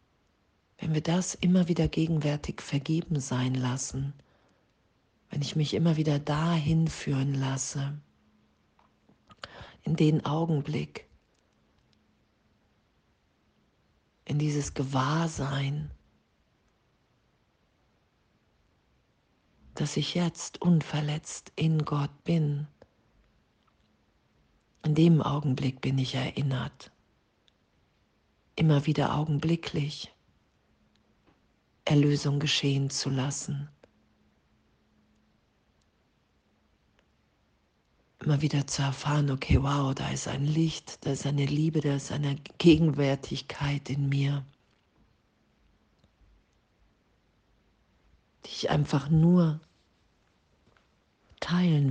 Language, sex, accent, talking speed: German, female, German, 80 wpm